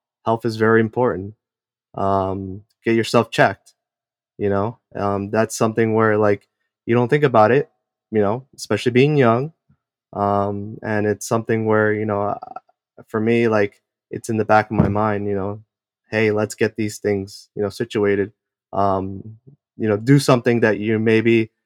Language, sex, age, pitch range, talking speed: English, male, 20-39, 105-115 Hz, 165 wpm